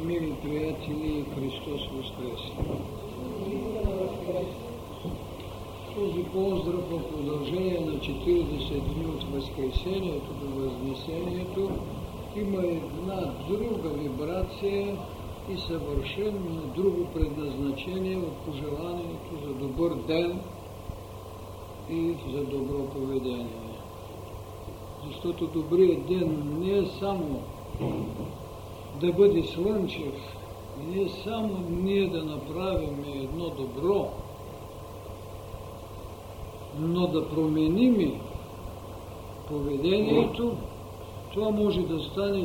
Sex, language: male, Bulgarian